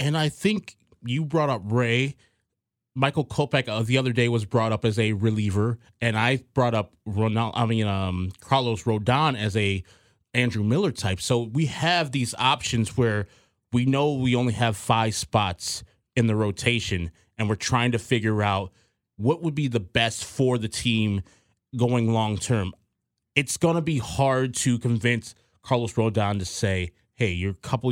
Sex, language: male, English